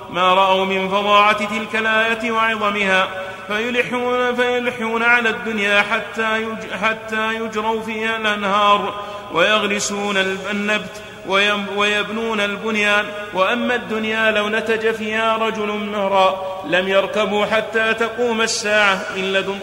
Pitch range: 200-225 Hz